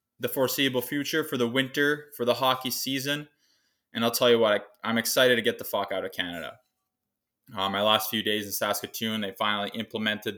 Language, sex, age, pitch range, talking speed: English, male, 20-39, 120-180 Hz, 195 wpm